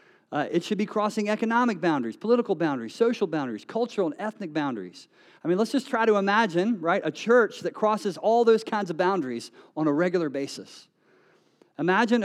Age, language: 40-59, English